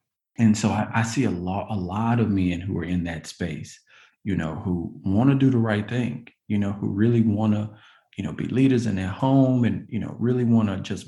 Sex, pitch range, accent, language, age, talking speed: male, 105-130 Hz, American, English, 40-59, 245 wpm